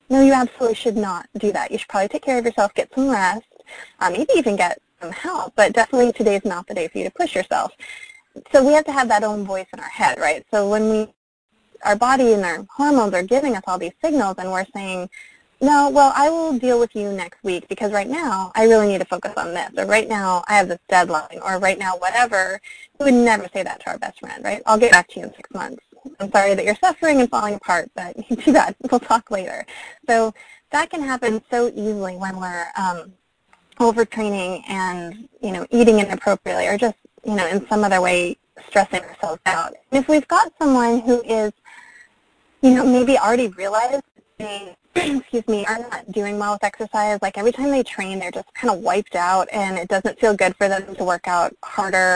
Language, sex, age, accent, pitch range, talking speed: English, female, 20-39, American, 190-255 Hz, 225 wpm